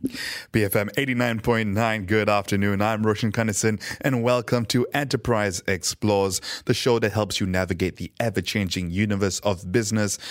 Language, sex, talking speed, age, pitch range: English, male, 135 wpm, 20-39, 95-115 Hz